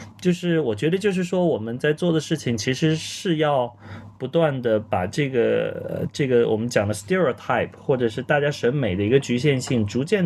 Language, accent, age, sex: Chinese, native, 20-39, male